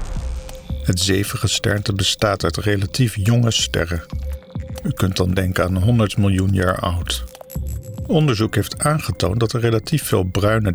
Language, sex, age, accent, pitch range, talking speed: Dutch, male, 50-69, Dutch, 95-115 Hz, 140 wpm